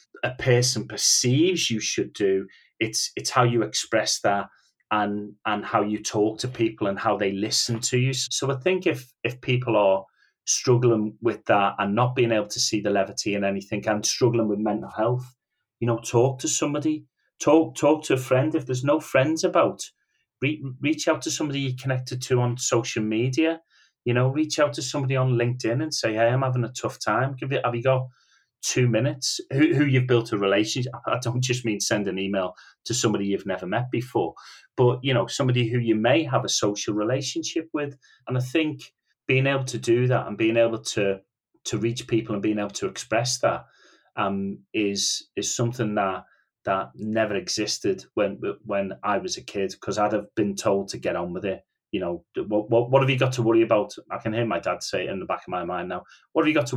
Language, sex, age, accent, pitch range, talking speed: English, male, 30-49, British, 105-135 Hz, 215 wpm